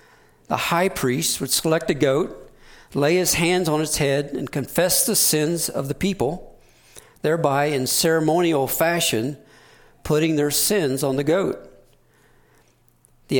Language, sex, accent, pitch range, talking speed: English, male, American, 125-165 Hz, 140 wpm